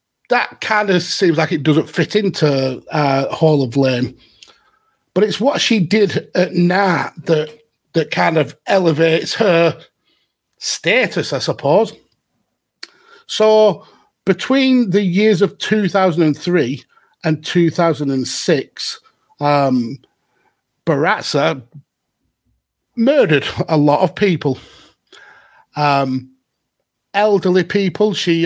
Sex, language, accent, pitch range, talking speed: male, English, British, 135-175 Hz, 105 wpm